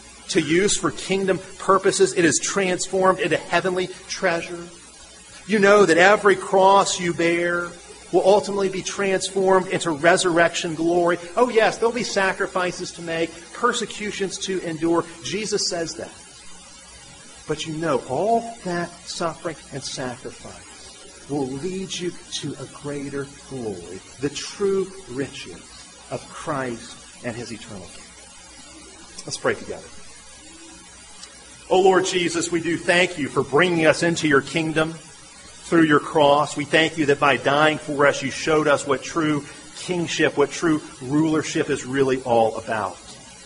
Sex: male